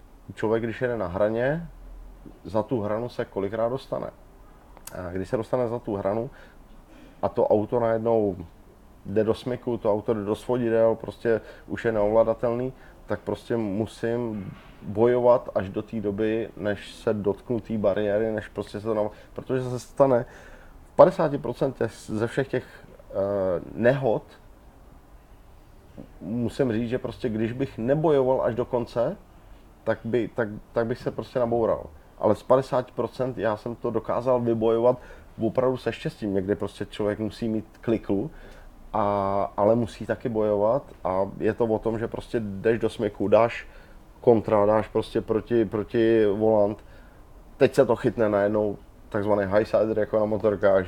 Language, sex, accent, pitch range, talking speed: Czech, male, native, 105-120 Hz, 150 wpm